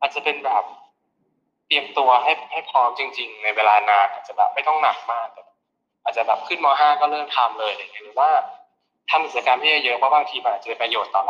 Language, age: Thai, 20-39